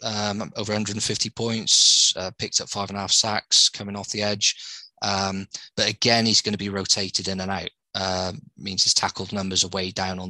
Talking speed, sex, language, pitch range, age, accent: 215 wpm, male, English, 95-110 Hz, 20-39, British